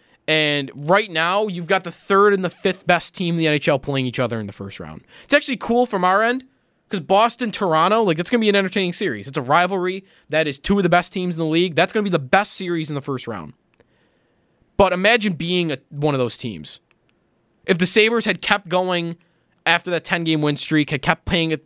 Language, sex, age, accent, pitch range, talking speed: English, male, 20-39, American, 135-180 Hz, 235 wpm